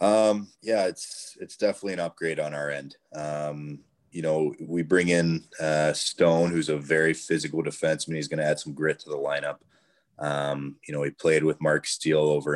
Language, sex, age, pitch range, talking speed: English, male, 20-39, 70-80 Hz, 195 wpm